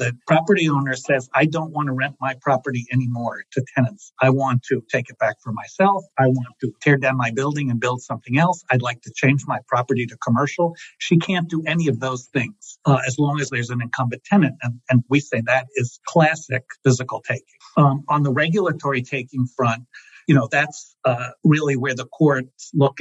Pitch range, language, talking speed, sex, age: 125-145 Hz, English, 210 wpm, male, 50-69